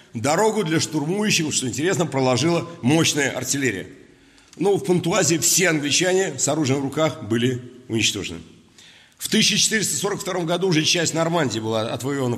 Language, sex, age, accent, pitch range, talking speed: Russian, male, 50-69, native, 120-170 Hz, 130 wpm